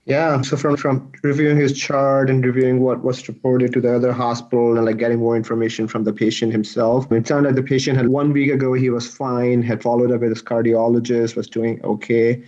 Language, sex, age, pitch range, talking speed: English, male, 30-49, 115-130 Hz, 220 wpm